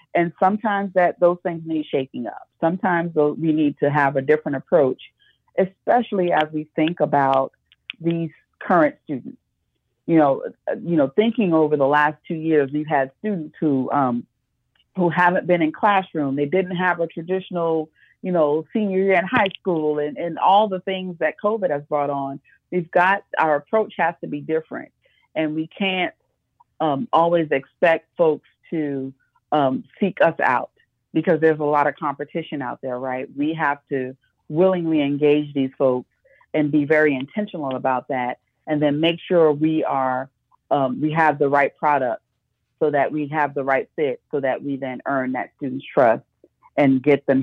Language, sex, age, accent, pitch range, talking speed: English, female, 40-59, American, 140-175 Hz, 175 wpm